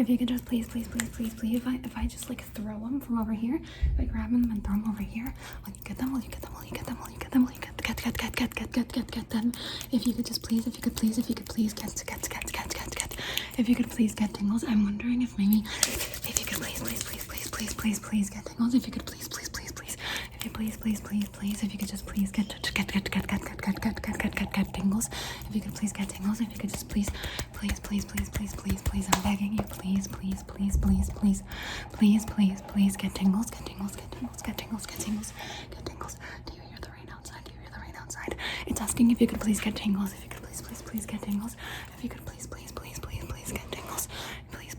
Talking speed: 270 wpm